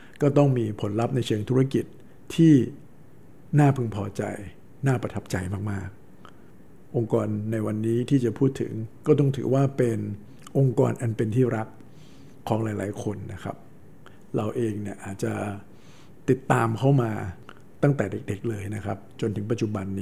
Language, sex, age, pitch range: Thai, male, 60-79, 105-130 Hz